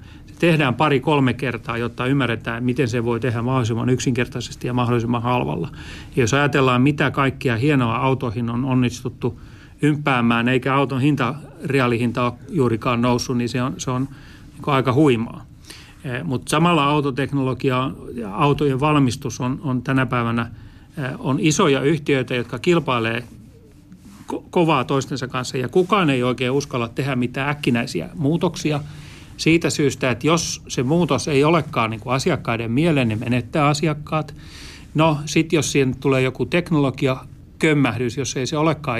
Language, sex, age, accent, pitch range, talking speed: Finnish, male, 40-59, native, 125-145 Hz, 135 wpm